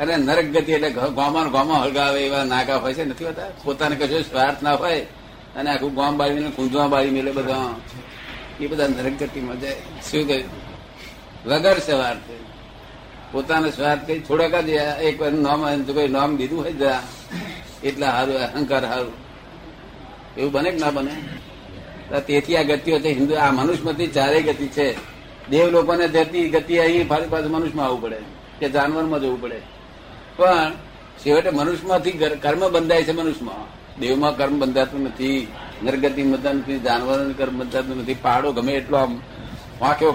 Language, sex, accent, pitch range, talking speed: Gujarati, male, native, 130-155 Hz, 130 wpm